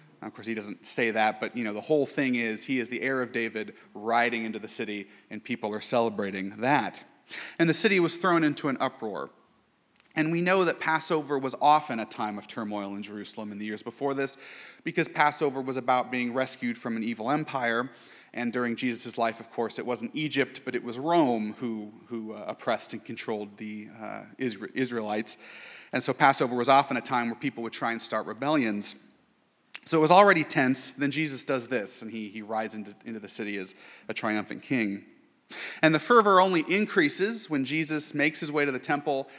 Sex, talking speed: male, 205 wpm